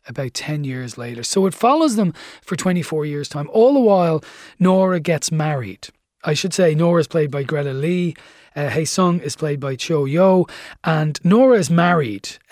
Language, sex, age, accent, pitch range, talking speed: English, male, 30-49, Irish, 145-190 Hz, 180 wpm